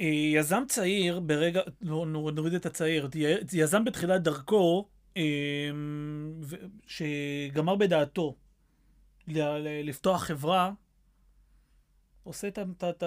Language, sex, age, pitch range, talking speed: Hebrew, male, 30-49, 145-175 Hz, 70 wpm